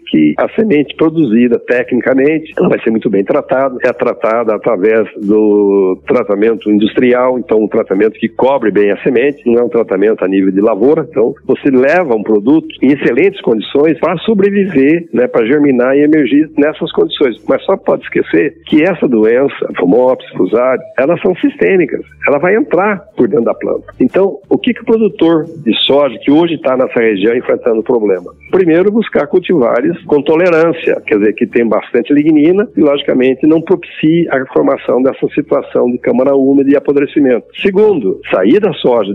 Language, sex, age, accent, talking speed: Portuguese, male, 60-79, Brazilian, 175 wpm